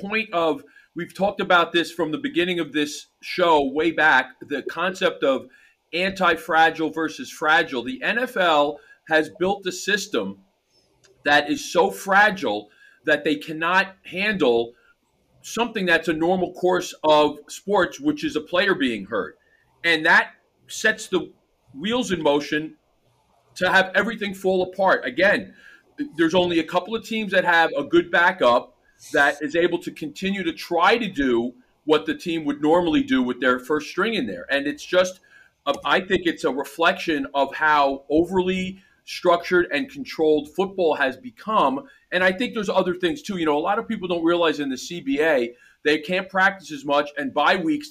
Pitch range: 150-195 Hz